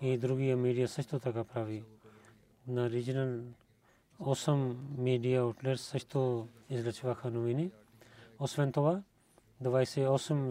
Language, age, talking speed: Bulgarian, 40-59, 105 wpm